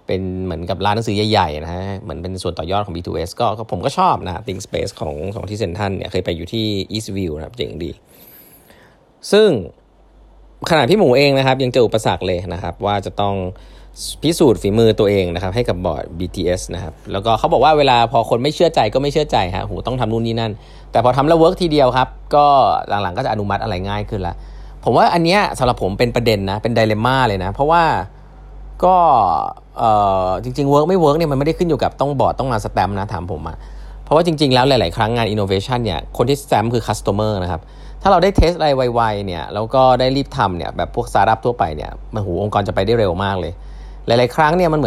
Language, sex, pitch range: Thai, male, 95-130 Hz